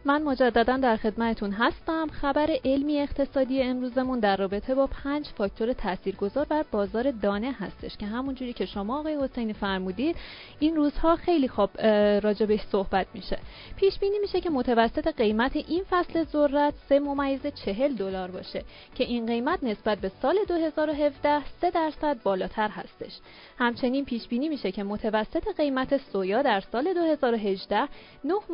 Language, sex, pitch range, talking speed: Persian, female, 215-295 Hz, 140 wpm